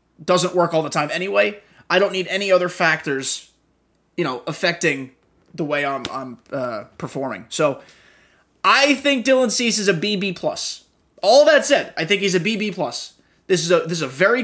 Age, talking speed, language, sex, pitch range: 20-39, 185 wpm, English, male, 155-225 Hz